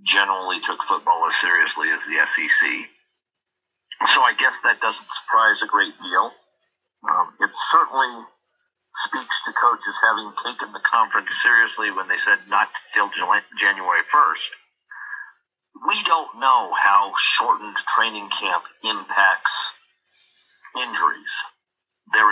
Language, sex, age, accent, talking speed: English, male, 50-69, American, 120 wpm